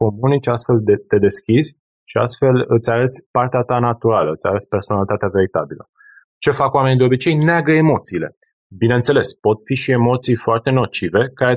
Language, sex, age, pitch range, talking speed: Romanian, male, 20-39, 100-120 Hz, 160 wpm